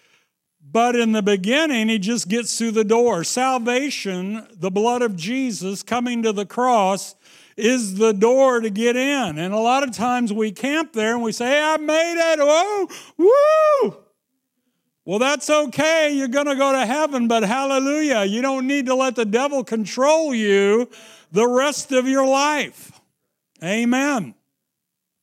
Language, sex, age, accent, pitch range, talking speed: English, male, 60-79, American, 195-250 Hz, 160 wpm